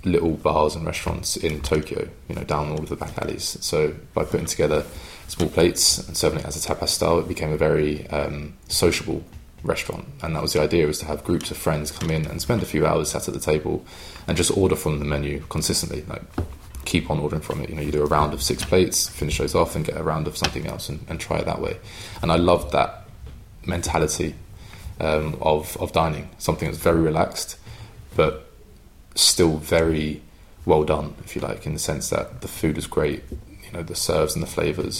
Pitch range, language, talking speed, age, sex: 75-90 Hz, English, 225 wpm, 20-39, male